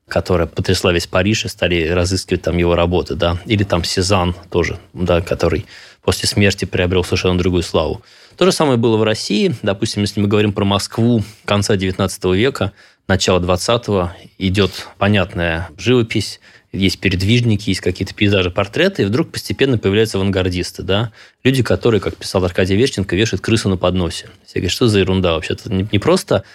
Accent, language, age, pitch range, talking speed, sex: native, Russian, 20-39, 95-110 Hz, 165 wpm, male